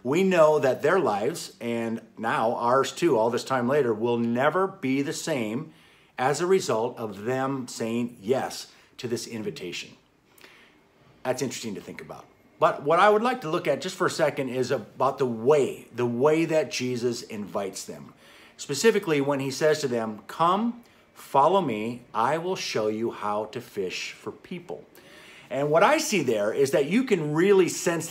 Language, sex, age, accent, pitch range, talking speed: English, male, 50-69, American, 120-180 Hz, 180 wpm